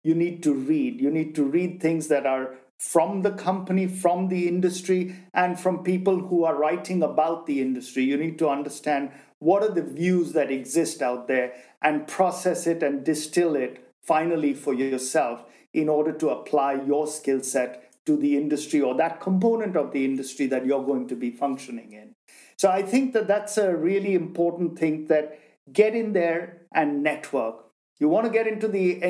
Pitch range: 140-180 Hz